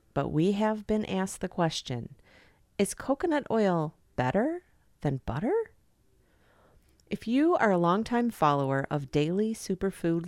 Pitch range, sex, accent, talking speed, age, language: 140-210 Hz, female, American, 130 wpm, 40-59, English